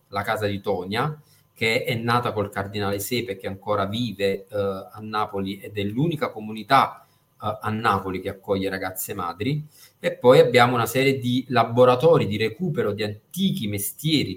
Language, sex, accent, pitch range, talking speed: Italian, male, native, 110-140 Hz, 165 wpm